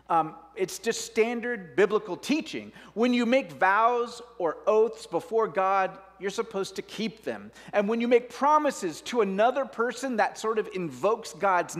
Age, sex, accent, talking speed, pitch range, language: 30-49, male, American, 165 wpm, 175-240 Hz, English